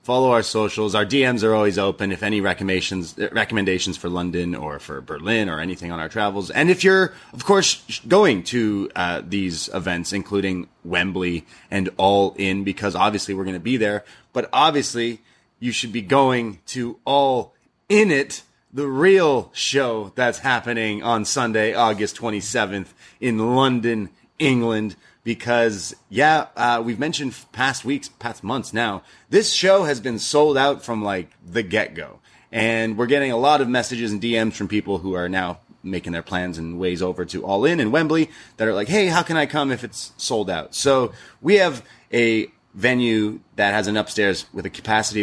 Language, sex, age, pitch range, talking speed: English, male, 30-49, 100-130 Hz, 180 wpm